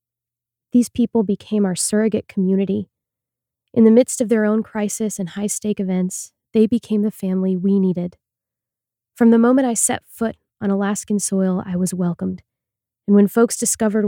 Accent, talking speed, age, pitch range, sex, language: American, 160 wpm, 20-39, 180-220 Hz, female, English